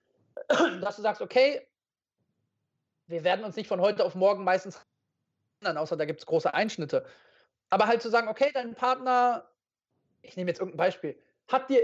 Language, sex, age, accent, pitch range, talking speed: German, male, 30-49, German, 205-260 Hz, 170 wpm